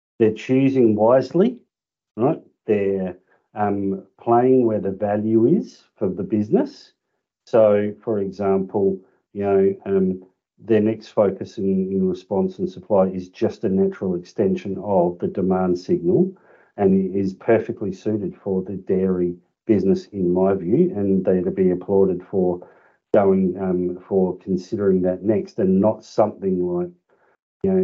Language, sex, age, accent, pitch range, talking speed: English, male, 50-69, Australian, 95-130 Hz, 140 wpm